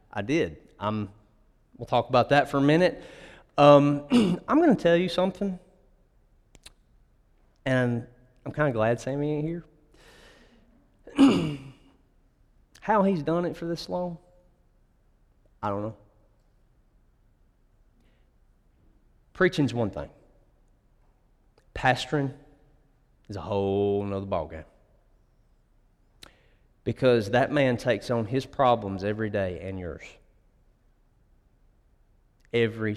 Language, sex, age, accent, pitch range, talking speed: English, male, 30-49, American, 105-145 Hz, 105 wpm